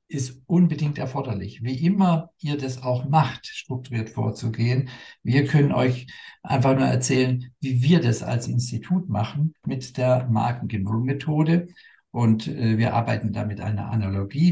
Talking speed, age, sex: 140 wpm, 50-69, male